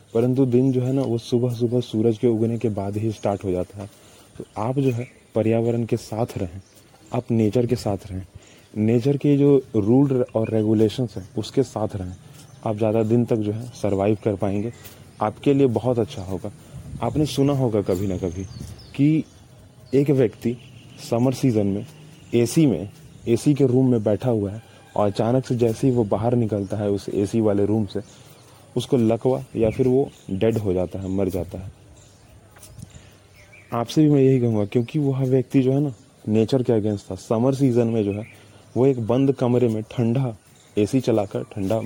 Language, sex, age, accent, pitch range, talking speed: Hindi, male, 30-49, native, 105-125 Hz, 190 wpm